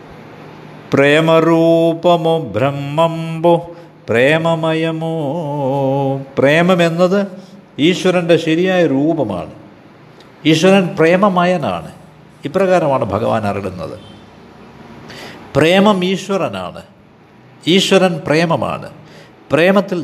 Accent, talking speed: native, 50 wpm